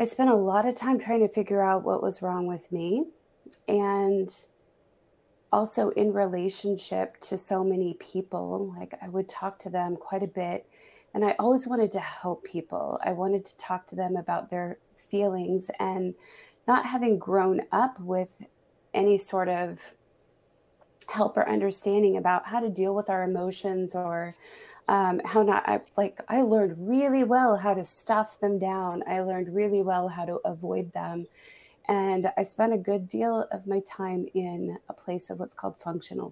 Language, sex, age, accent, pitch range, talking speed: English, female, 20-39, American, 180-205 Hz, 175 wpm